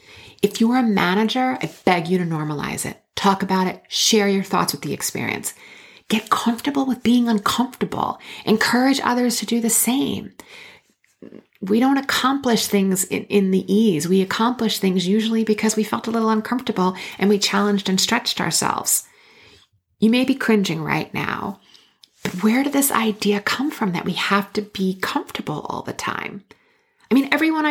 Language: English